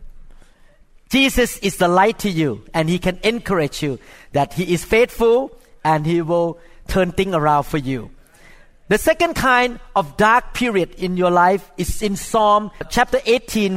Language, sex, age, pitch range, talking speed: English, male, 50-69, 170-230 Hz, 160 wpm